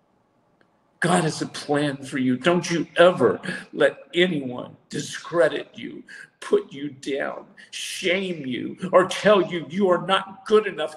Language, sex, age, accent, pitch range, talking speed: English, male, 50-69, American, 175-230 Hz, 140 wpm